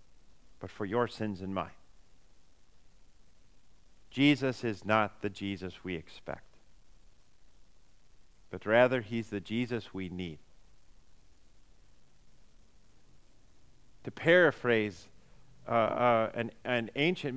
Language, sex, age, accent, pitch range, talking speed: English, male, 50-69, American, 110-170 Hz, 95 wpm